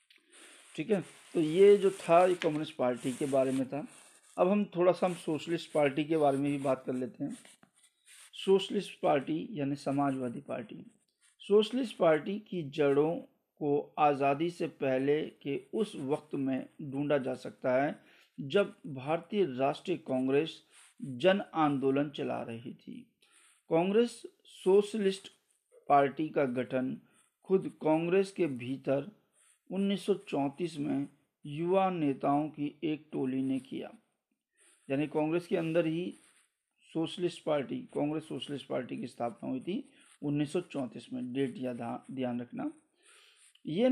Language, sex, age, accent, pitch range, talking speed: Hindi, male, 50-69, native, 140-190 Hz, 135 wpm